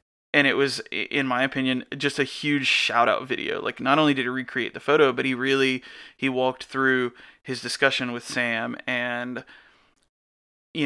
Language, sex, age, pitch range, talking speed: English, male, 20-39, 125-140 Hz, 170 wpm